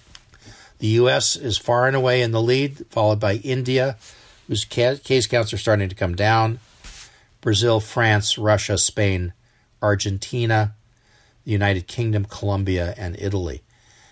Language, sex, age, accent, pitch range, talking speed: English, male, 50-69, American, 95-115 Hz, 130 wpm